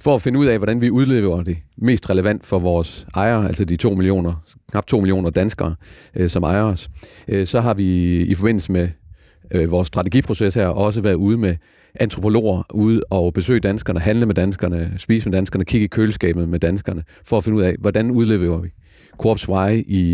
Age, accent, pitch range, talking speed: 40-59, native, 90-110 Hz, 200 wpm